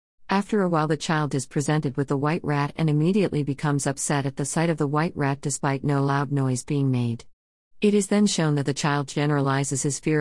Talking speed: 225 wpm